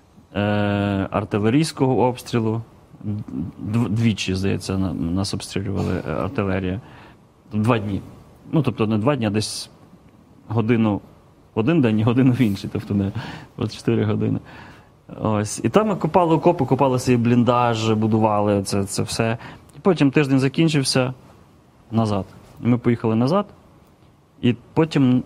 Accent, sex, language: native, male, Russian